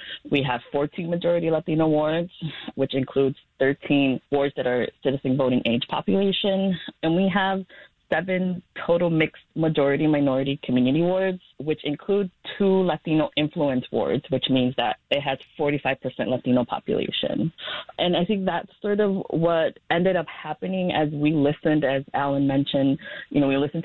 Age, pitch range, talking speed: 20-39, 130-165 Hz, 150 wpm